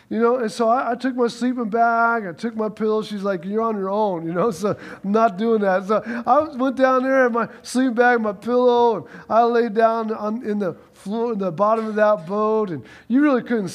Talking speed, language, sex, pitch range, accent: 245 wpm, English, male, 195-235 Hz, American